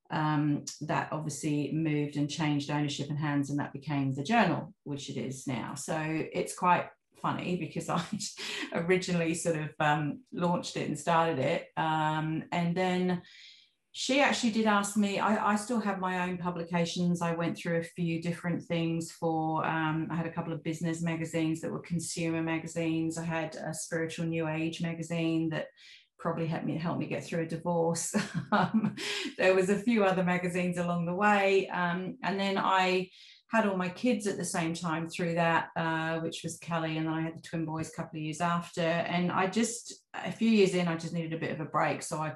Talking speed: 200 wpm